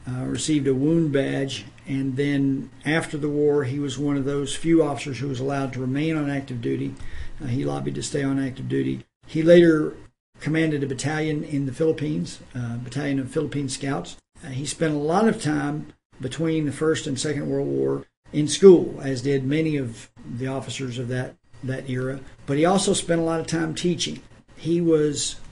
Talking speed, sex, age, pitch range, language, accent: 195 wpm, male, 50-69, 130-155 Hz, English, American